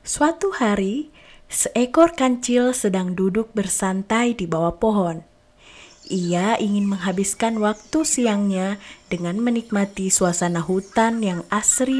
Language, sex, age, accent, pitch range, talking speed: Indonesian, female, 20-39, native, 185-255 Hz, 105 wpm